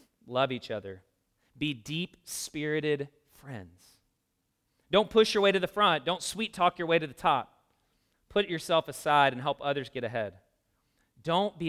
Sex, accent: male, American